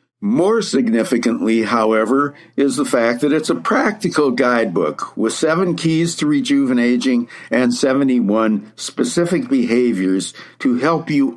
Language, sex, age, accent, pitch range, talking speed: English, male, 60-79, American, 115-160 Hz, 120 wpm